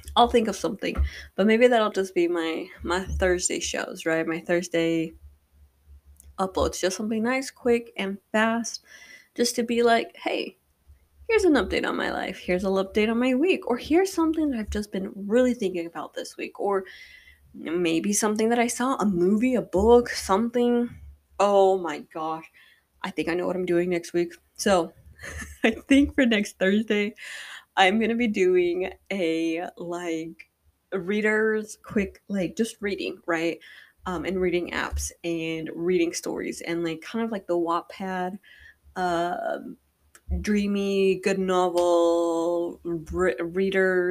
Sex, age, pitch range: female, 20-39, 165-215 Hz